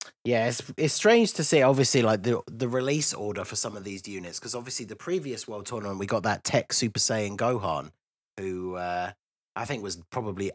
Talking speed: 205 wpm